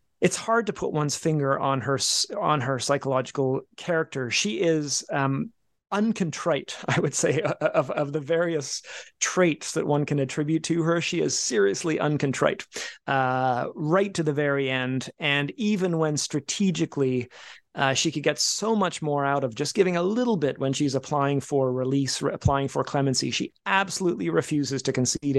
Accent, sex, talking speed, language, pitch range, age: American, male, 170 wpm, English, 125-150 Hz, 30-49